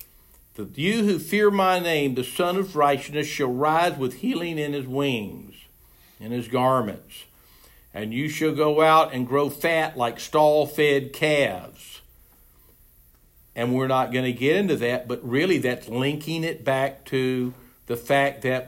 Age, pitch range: 60-79, 125-155 Hz